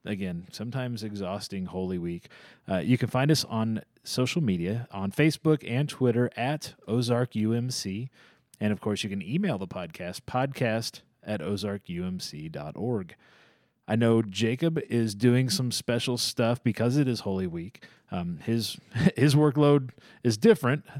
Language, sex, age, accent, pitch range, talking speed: English, male, 30-49, American, 100-125 Hz, 140 wpm